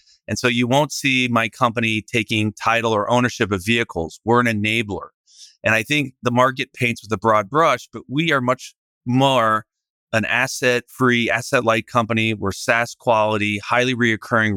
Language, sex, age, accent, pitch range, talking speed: English, male, 30-49, American, 105-125 Hz, 170 wpm